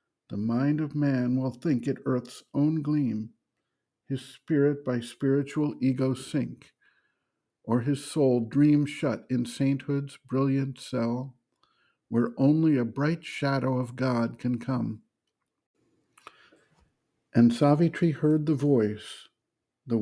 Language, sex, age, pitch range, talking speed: English, male, 50-69, 125-145 Hz, 120 wpm